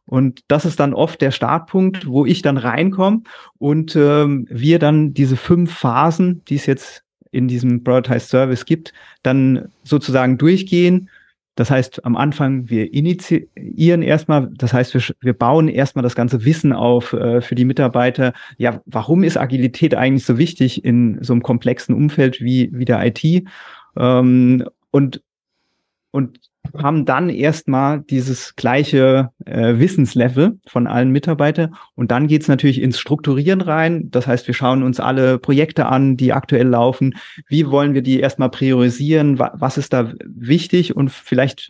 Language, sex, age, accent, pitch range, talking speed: German, male, 30-49, German, 125-150 Hz, 160 wpm